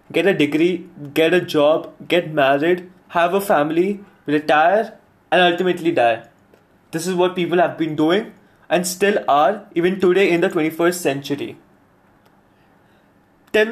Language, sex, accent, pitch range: English, male, Indian, 160-200 Hz